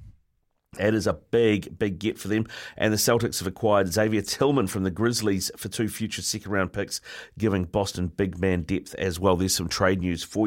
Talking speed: 205 wpm